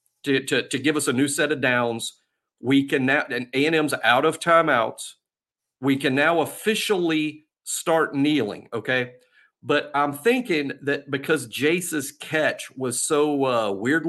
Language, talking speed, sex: English, 155 wpm, male